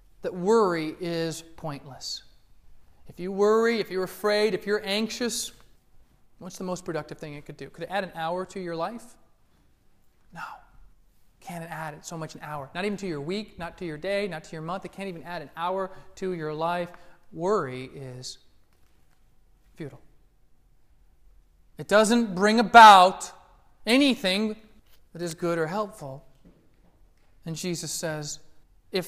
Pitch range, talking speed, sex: 130-190 Hz, 155 wpm, male